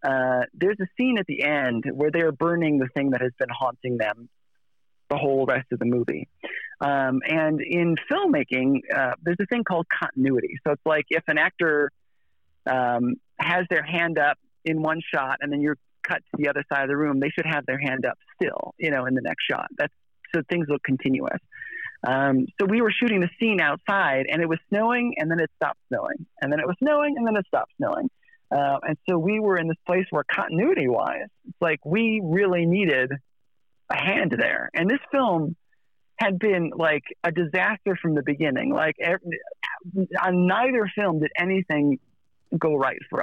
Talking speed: 200 wpm